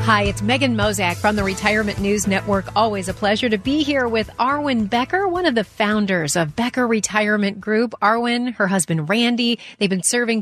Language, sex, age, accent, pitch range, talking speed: English, female, 40-59, American, 180-235 Hz, 190 wpm